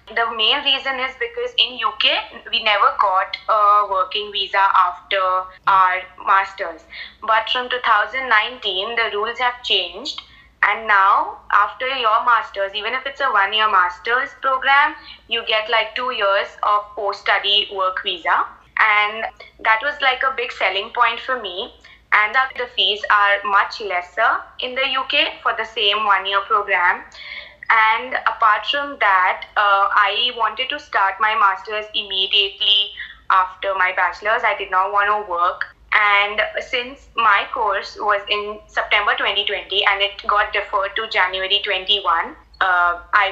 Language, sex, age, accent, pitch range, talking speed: English, female, 20-39, Indian, 200-235 Hz, 150 wpm